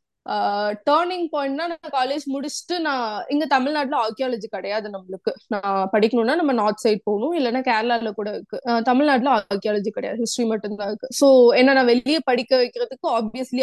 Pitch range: 215-275 Hz